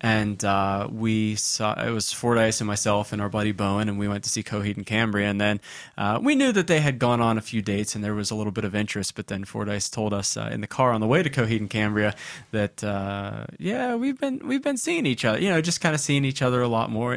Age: 20-39